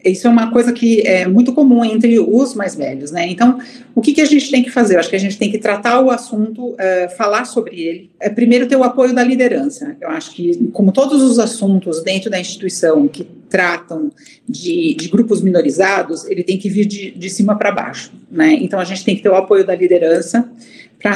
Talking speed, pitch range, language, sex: 220 wpm, 180-220 Hz, Portuguese, female